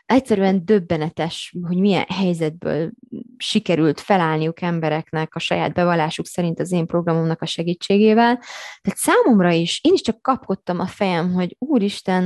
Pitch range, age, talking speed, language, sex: 170-230 Hz, 20-39, 135 wpm, Hungarian, female